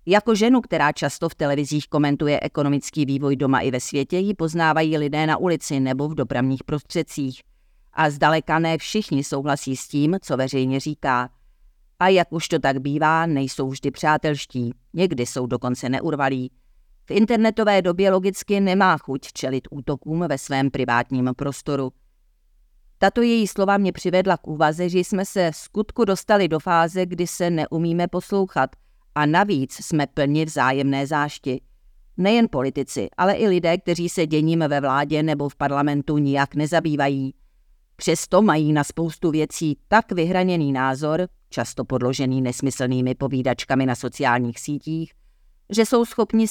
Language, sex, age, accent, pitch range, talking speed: Czech, female, 40-59, native, 135-175 Hz, 150 wpm